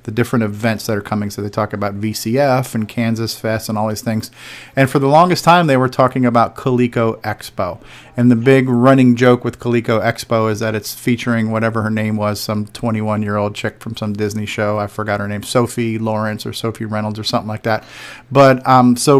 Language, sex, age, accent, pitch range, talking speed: English, male, 40-59, American, 115-135 Hz, 220 wpm